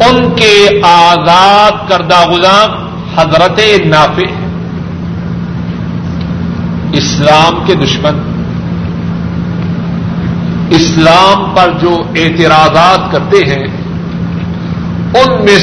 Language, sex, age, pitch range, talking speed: Urdu, male, 50-69, 170-195 Hz, 70 wpm